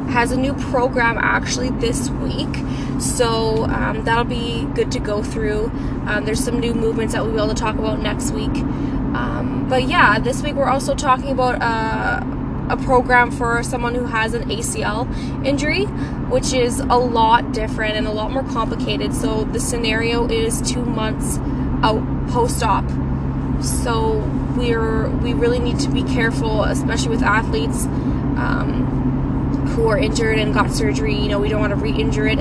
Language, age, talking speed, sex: English, 10-29, 170 wpm, female